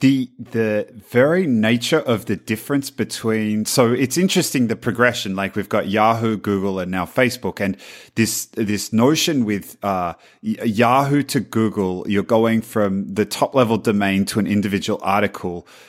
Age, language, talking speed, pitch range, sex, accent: 30-49, English, 155 wpm, 100-125 Hz, male, Australian